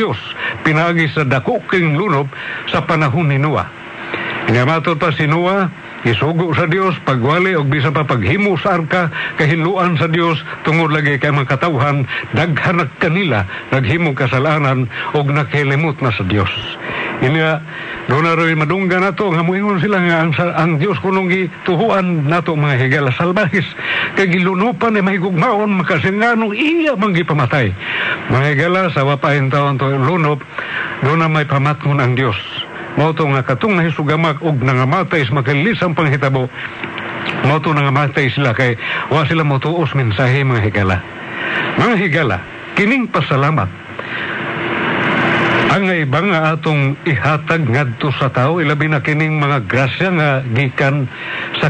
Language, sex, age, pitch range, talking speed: Filipino, male, 60-79, 135-170 Hz, 135 wpm